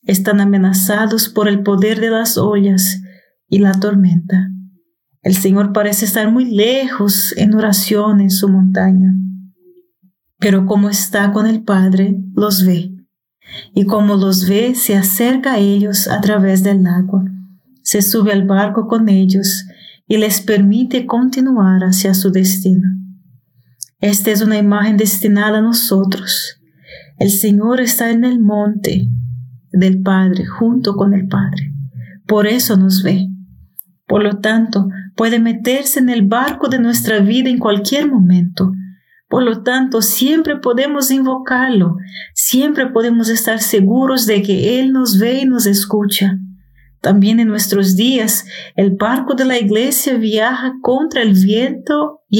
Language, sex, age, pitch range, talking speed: Spanish, female, 40-59, 190-230 Hz, 140 wpm